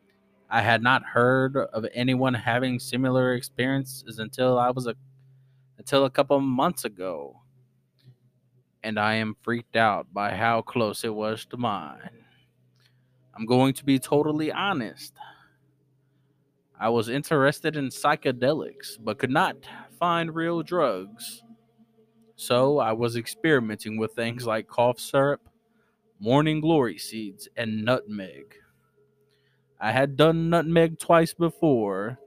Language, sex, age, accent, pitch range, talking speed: English, male, 20-39, American, 115-140 Hz, 125 wpm